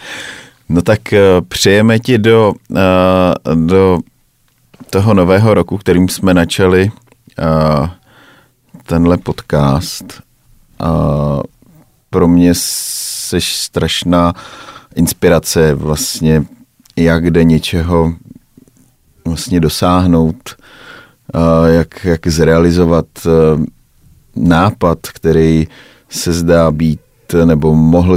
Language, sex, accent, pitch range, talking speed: Czech, male, native, 80-90 Hz, 85 wpm